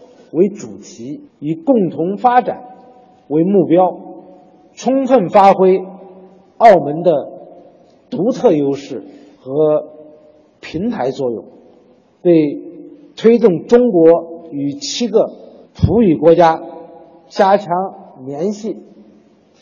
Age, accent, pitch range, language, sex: 50-69, native, 165-235 Hz, Chinese, male